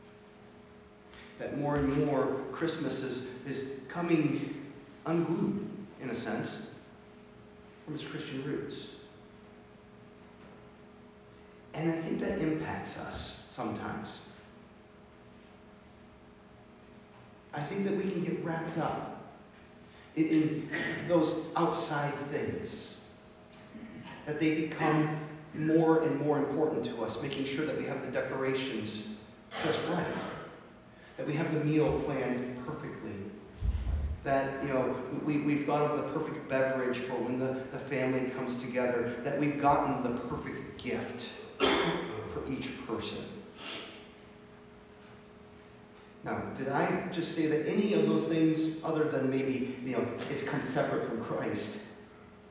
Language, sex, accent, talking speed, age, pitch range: English, male, American, 120 wpm, 40-59, 130-160 Hz